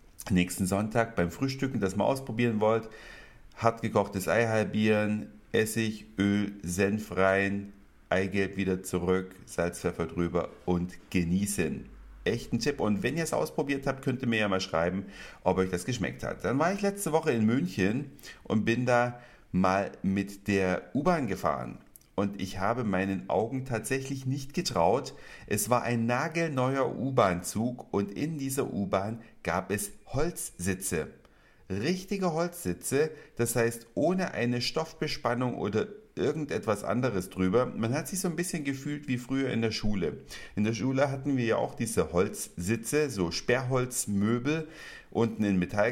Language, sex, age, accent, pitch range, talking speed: German, male, 50-69, German, 95-125 Hz, 150 wpm